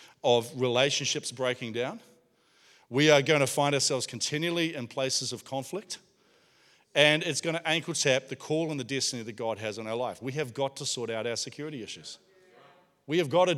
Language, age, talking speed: English, 40-59, 200 wpm